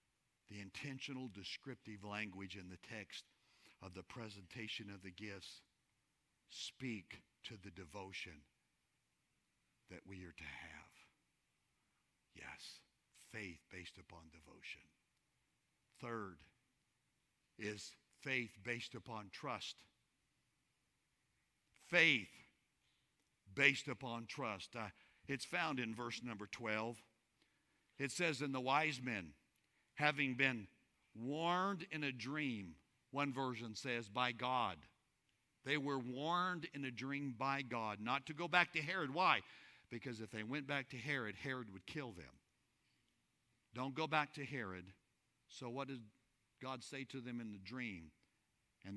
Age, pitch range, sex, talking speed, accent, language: 60-79, 100-135 Hz, male, 125 wpm, American, English